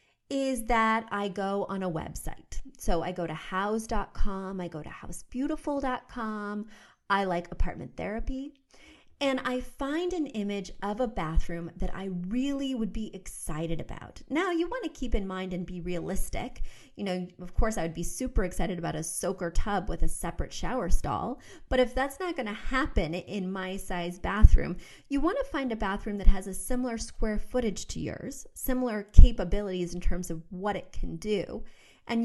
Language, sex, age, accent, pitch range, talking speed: English, female, 30-49, American, 180-245 Hz, 180 wpm